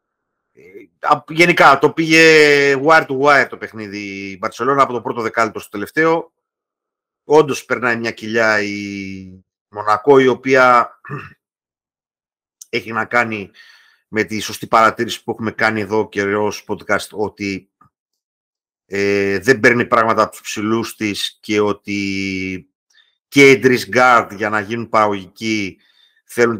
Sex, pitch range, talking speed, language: male, 100-135 Hz, 130 wpm, Greek